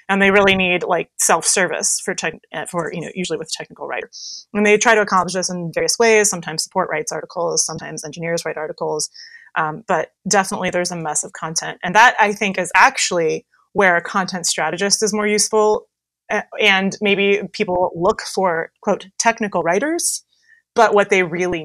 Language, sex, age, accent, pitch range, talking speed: English, female, 30-49, American, 170-210 Hz, 185 wpm